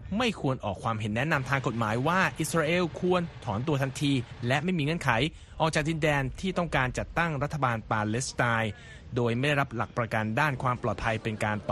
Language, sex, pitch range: Thai, male, 115-155 Hz